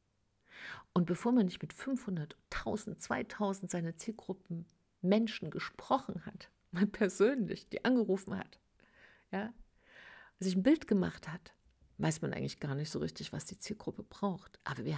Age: 50-69